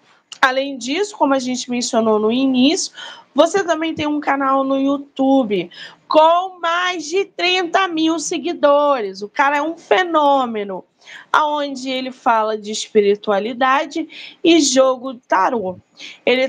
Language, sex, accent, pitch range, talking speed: Portuguese, female, Brazilian, 230-310 Hz, 125 wpm